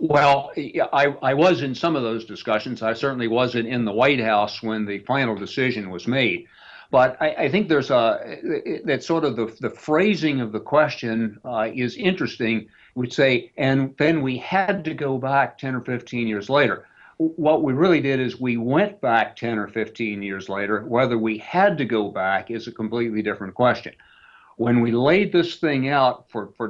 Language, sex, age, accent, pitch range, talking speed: English, male, 60-79, American, 110-135 Hz, 195 wpm